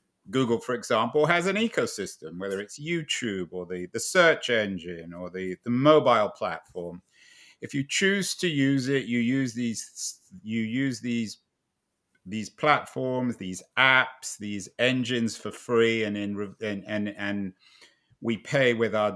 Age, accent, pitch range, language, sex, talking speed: 50-69, British, 110-150 Hz, English, male, 150 wpm